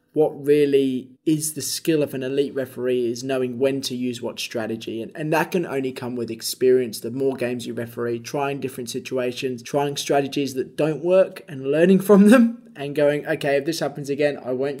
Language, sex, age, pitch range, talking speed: English, male, 20-39, 130-150 Hz, 205 wpm